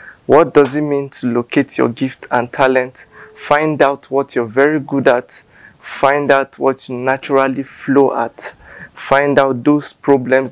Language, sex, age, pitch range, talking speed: English, male, 20-39, 130-155 Hz, 160 wpm